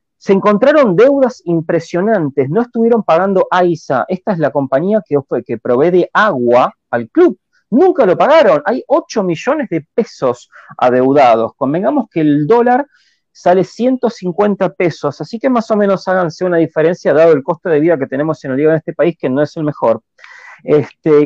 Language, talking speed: Spanish, 175 wpm